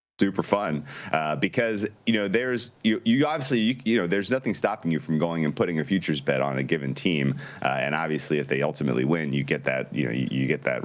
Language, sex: English, male